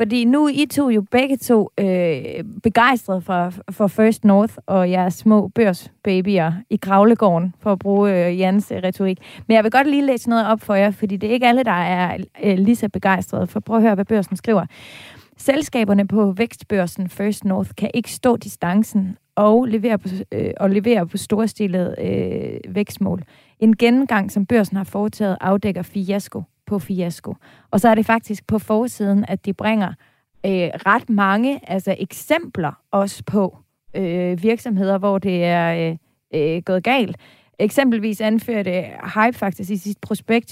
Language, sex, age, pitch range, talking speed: Danish, female, 30-49, 190-225 Hz, 170 wpm